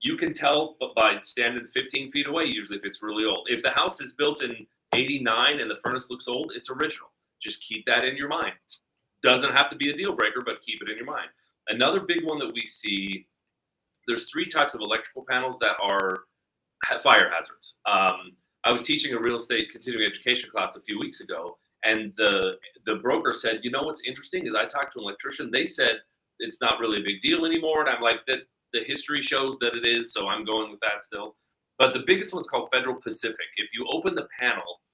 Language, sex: English, male